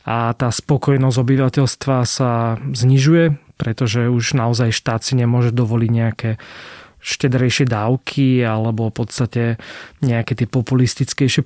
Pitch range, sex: 120-140 Hz, male